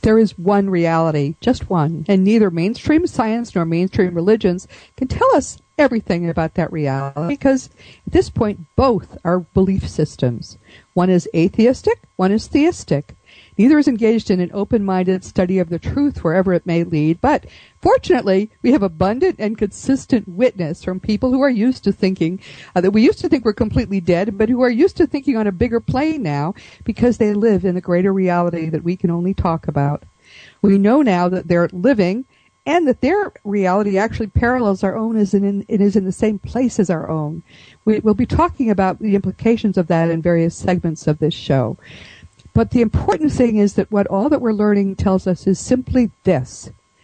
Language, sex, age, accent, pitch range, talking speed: English, female, 50-69, American, 175-230 Hz, 195 wpm